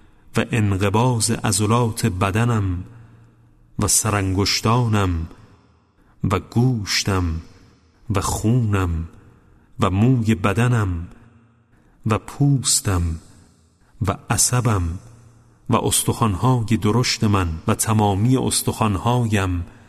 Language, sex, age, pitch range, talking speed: Persian, male, 40-59, 95-115 Hz, 70 wpm